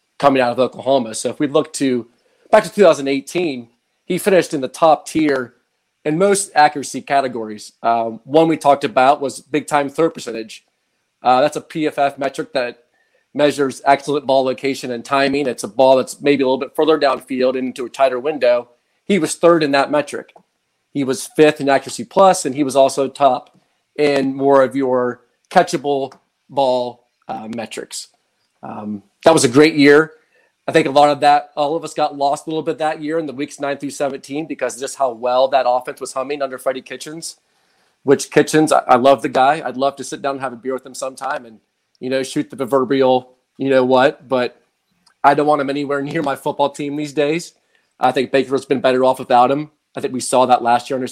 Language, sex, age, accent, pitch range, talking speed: English, male, 40-59, American, 130-150 Hz, 210 wpm